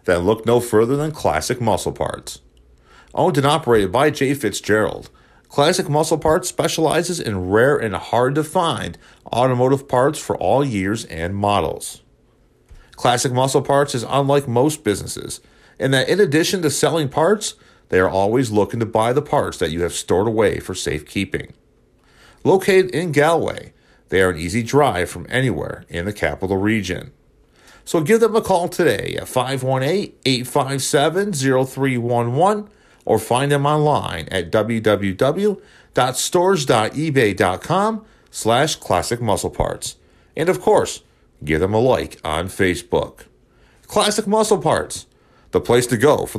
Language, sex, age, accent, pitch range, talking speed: English, male, 40-59, American, 105-155 Hz, 140 wpm